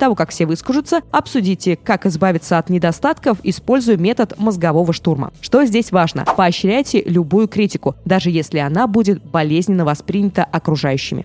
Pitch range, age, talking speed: 175-245 Hz, 20-39, 140 wpm